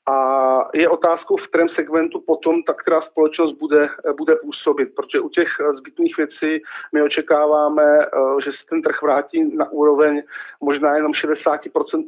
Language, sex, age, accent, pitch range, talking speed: Czech, male, 40-59, native, 145-195 Hz, 150 wpm